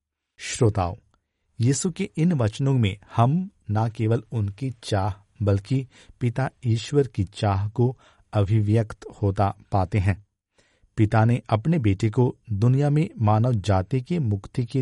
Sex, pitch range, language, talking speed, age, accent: male, 100-125 Hz, Hindi, 135 wpm, 50-69, native